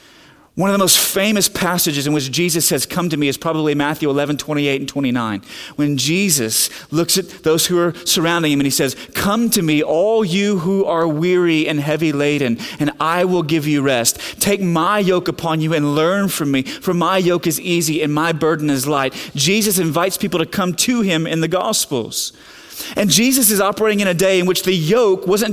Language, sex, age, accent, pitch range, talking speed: English, male, 30-49, American, 160-220 Hz, 215 wpm